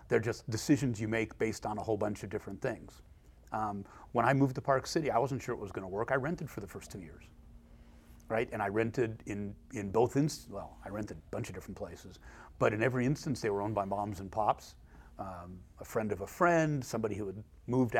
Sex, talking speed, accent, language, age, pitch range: male, 235 wpm, American, English, 40-59, 100-130 Hz